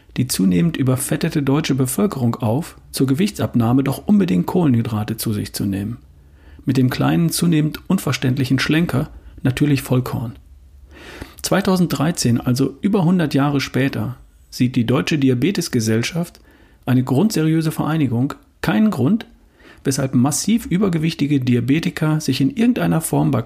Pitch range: 120-150 Hz